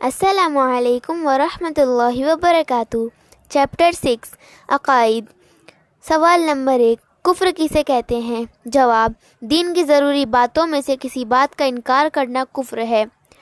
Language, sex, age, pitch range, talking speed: Hindi, female, 20-39, 245-310 Hz, 120 wpm